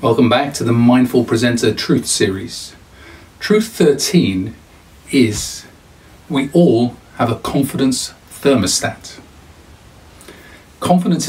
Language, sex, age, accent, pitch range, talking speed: English, male, 40-59, British, 105-140 Hz, 95 wpm